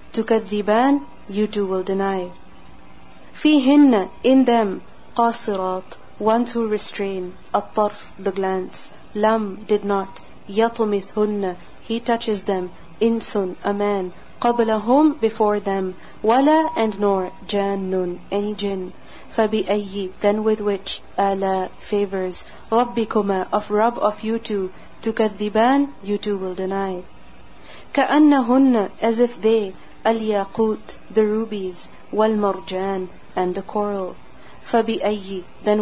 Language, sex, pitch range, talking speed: English, female, 190-225 Hz, 105 wpm